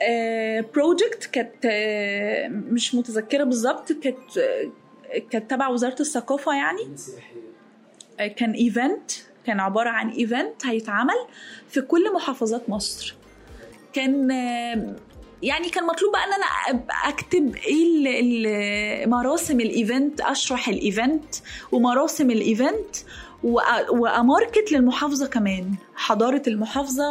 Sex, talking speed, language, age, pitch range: female, 105 wpm, Arabic, 20-39, 225-290 Hz